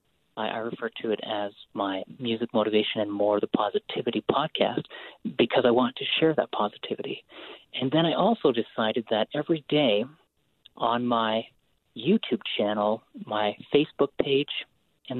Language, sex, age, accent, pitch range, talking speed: English, male, 40-59, American, 110-145 Hz, 140 wpm